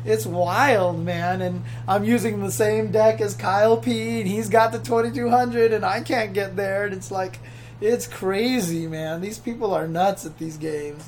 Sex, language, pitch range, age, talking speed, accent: male, English, 180-225 Hz, 20-39, 190 wpm, American